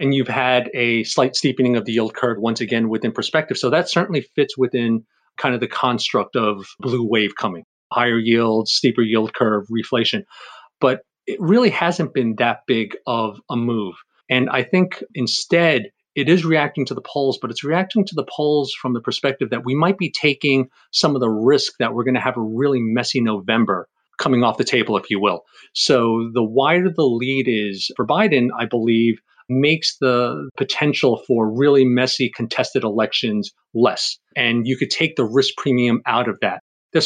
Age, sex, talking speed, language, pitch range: 40-59, male, 190 wpm, English, 115-140 Hz